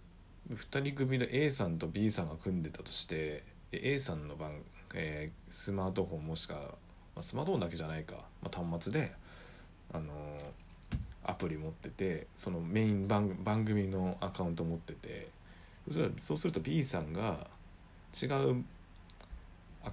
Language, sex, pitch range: Japanese, male, 85-105 Hz